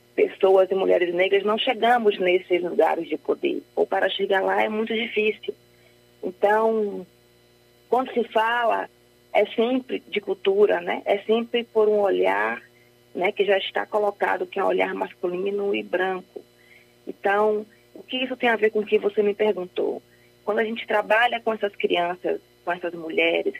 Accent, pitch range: Brazilian, 170-220 Hz